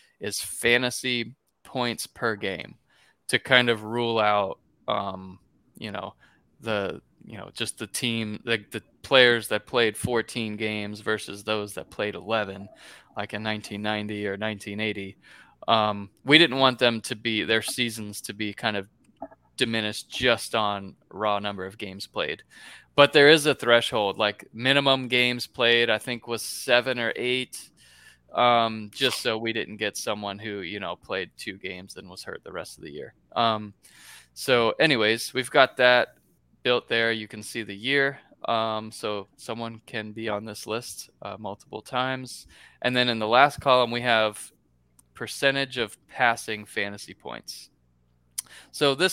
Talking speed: 160 wpm